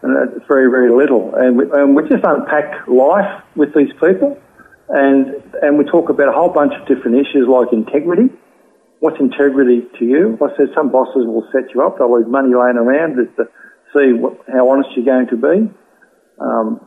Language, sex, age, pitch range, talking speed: English, male, 50-69, 120-140 Hz, 195 wpm